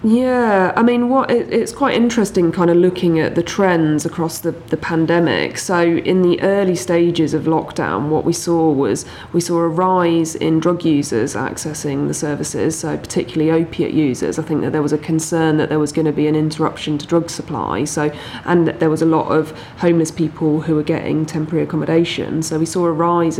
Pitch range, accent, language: 155-170 Hz, British, English